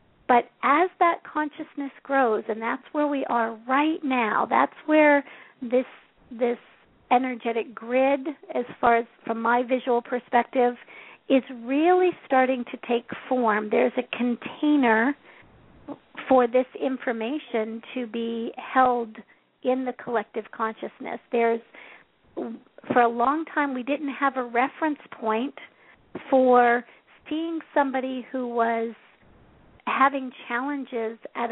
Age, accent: 50-69, American